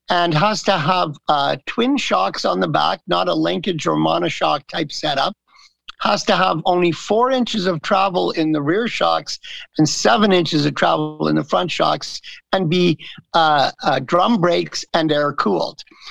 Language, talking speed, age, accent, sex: English, 175 wpm, 50-69, American, male